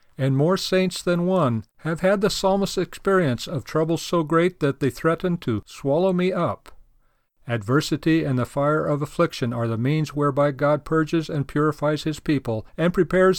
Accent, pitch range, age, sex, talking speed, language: American, 125-160 Hz, 50-69, male, 175 wpm, English